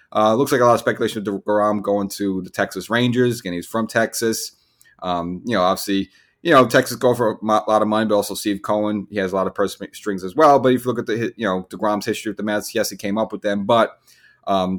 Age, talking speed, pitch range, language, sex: 30-49, 265 wpm, 95-110 Hz, English, male